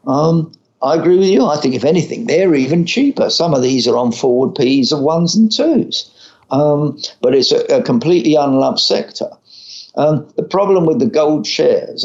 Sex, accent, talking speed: male, British, 190 wpm